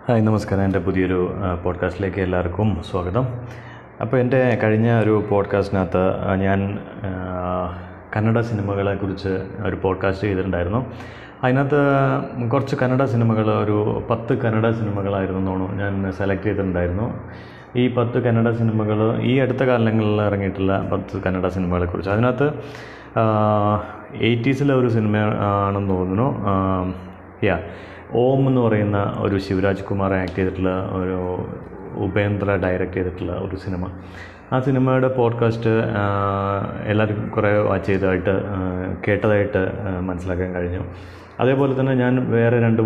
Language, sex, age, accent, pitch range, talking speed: Malayalam, male, 30-49, native, 95-115 Hz, 110 wpm